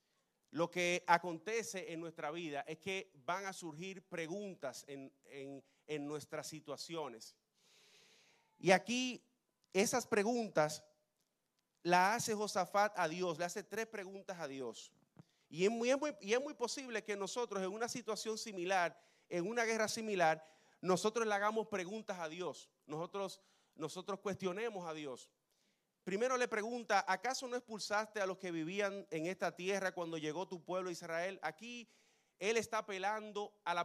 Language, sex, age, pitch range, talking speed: Spanish, male, 30-49, 160-210 Hz, 150 wpm